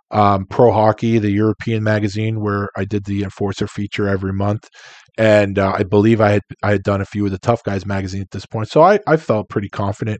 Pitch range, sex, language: 100-115 Hz, male, English